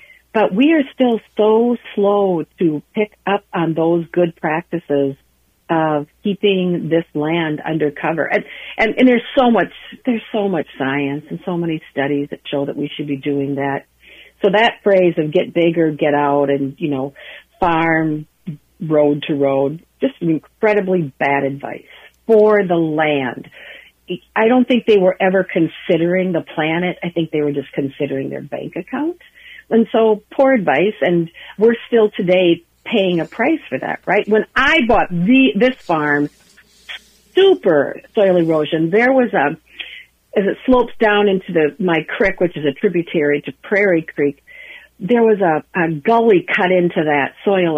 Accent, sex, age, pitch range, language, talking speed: American, female, 50-69, 150-205 Hz, English, 165 wpm